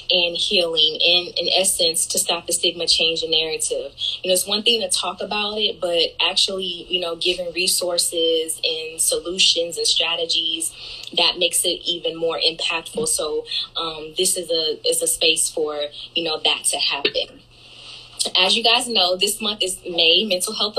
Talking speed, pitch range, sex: 175 wpm, 170-210 Hz, female